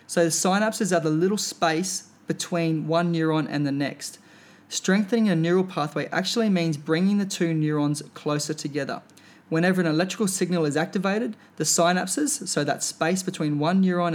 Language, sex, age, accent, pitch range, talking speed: English, male, 20-39, Australian, 150-180 Hz, 165 wpm